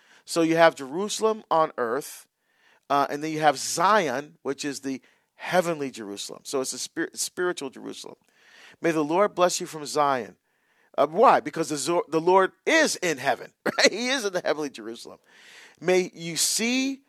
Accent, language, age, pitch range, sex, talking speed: American, English, 40-59, 140-195 Hz, male, 175 wpm